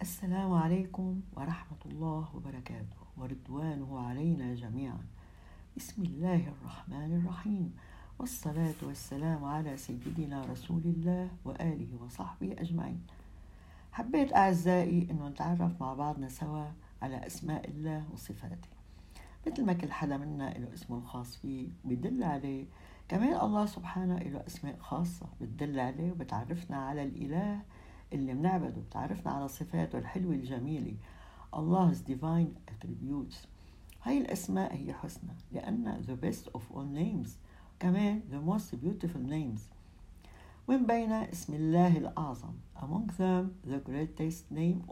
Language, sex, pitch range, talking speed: Arabic, female, 120-175 Hz, 120 wpm